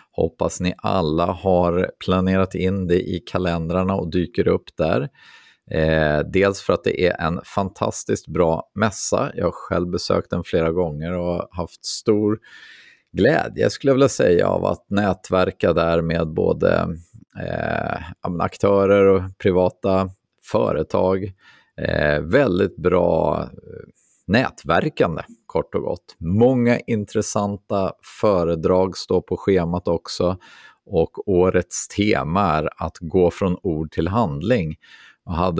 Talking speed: 120 wpm